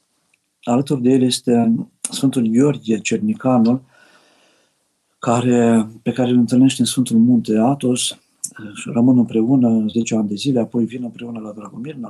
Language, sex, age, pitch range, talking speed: Romanian, male, 50-69, 110-130 Hz, 135 wpm